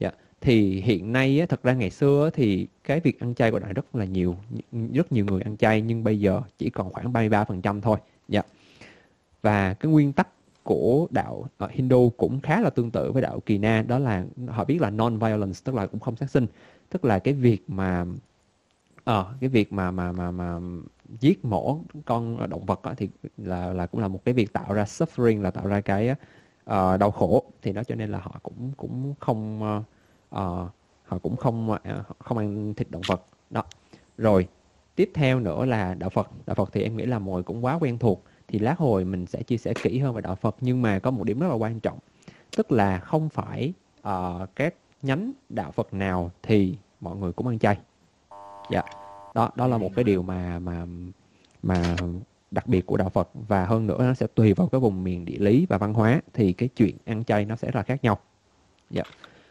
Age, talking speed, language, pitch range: 20-39, 215 wpm, Vietnamese, 95-125 Hz